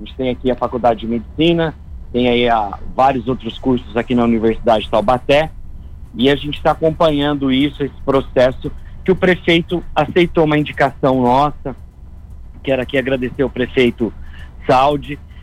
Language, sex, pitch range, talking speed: Portuguese, male, 130-165 Hz, 155 wpm